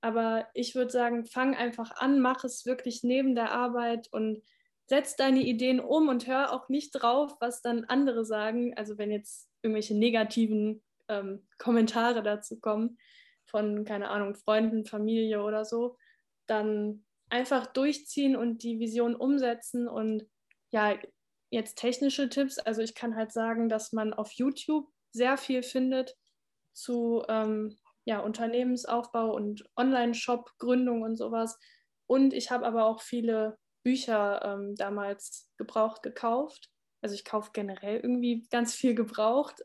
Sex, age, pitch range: female, 10-29, 220-255 Hz